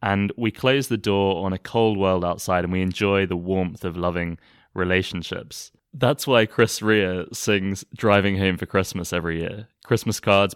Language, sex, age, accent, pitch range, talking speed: English, male, 20-39, British, 90-110 Hz, 175 wpm